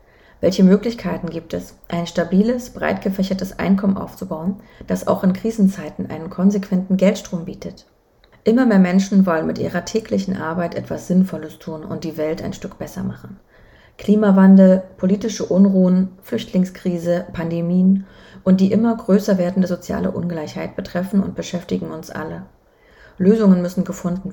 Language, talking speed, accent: German, 140 wpm, German